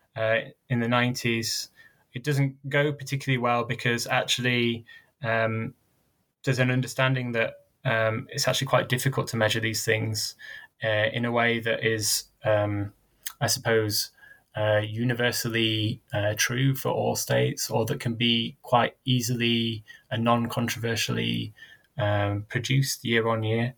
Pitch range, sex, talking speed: 110-130 Hz, male, 135 wpm